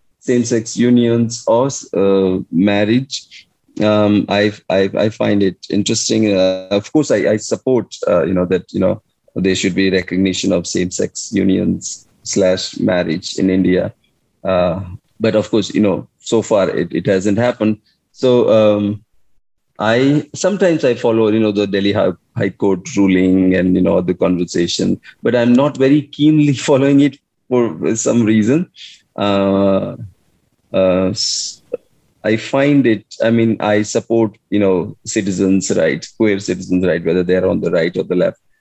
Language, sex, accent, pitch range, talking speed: English, male, Indian, 95-115 Hz, 155 wpm